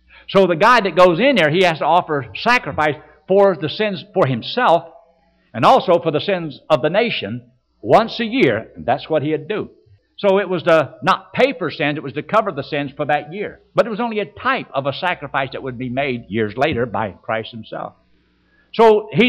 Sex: male